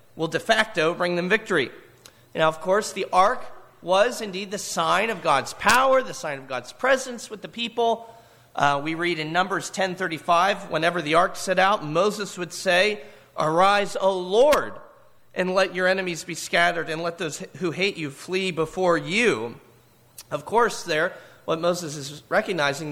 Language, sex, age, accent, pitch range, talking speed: English, male, 40-59, American, 140-185 Hz, 170 wpm